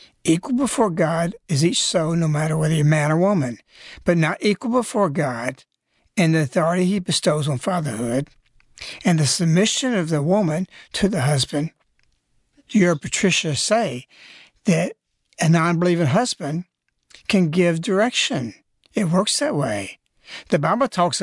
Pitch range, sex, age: 155-195 Hz, male, 60-79